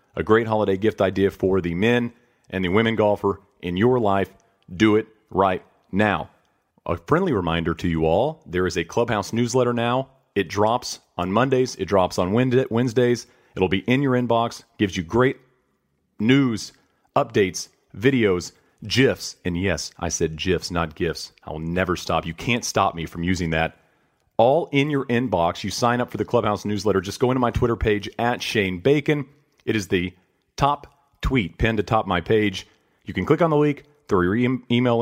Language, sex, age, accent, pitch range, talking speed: English, male, 40-59, American, 95-130 Hz, 185 wpm